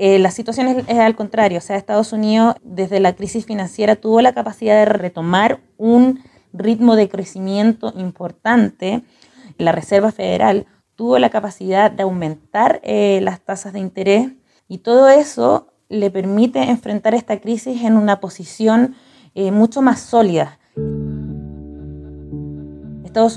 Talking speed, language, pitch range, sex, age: 140 wpm, Spanish, 190-225 Hz, female, 20-39